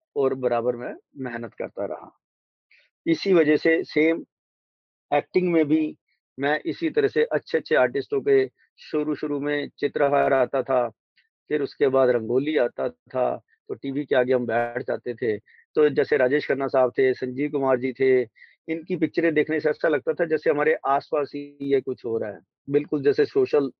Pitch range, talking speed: 125-165 Hz, 175 wpm